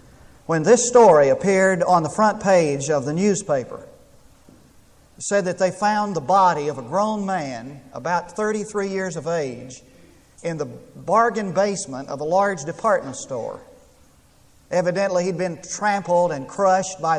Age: 40-59